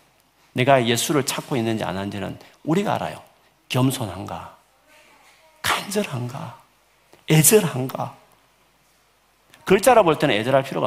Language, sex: Korean, male